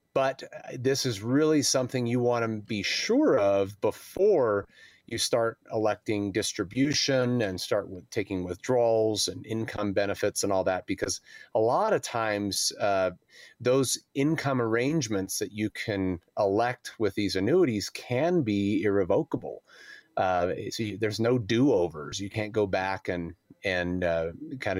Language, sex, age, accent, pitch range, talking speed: English, male, 30-49, American, 105-140 Hz, 145 wpm